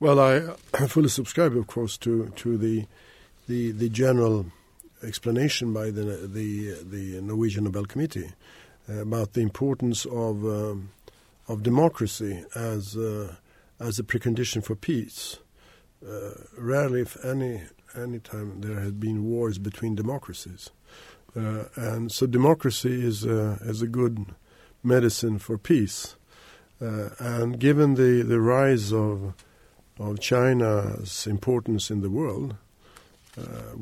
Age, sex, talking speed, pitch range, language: 50-69, male, 130 wpm, 105-125 Hz, English